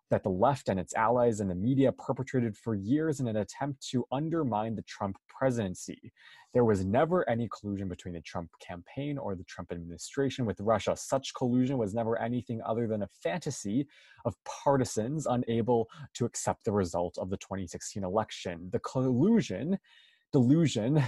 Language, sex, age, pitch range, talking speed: English, male, 20-39, 105-135 Hz, 165 wpm